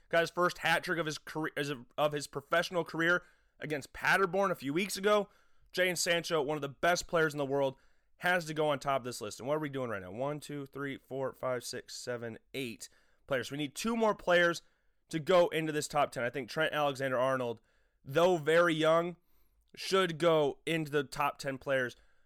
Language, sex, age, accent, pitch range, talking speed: English, male, 30-49, American, 140-170 Hz, 215 wpm